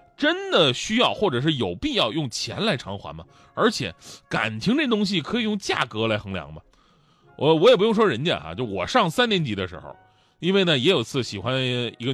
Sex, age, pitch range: male, 30-49, 115-175 Hz